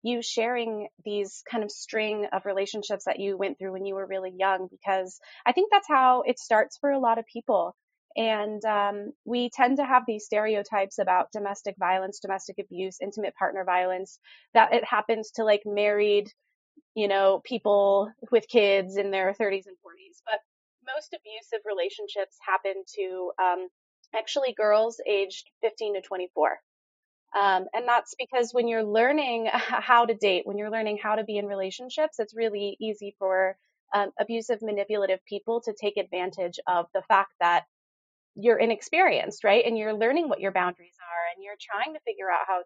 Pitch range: 190-230 Hz